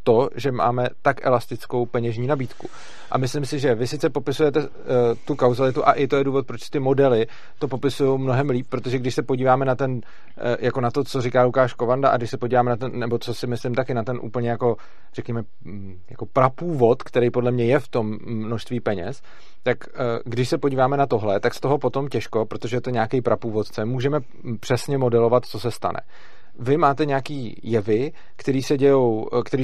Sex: male